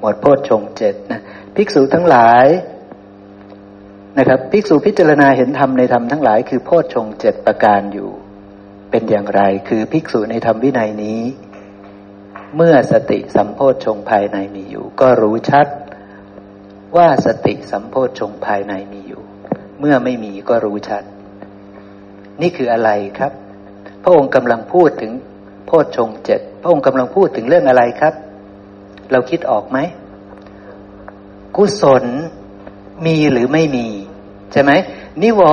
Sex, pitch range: male, 100-145 Hz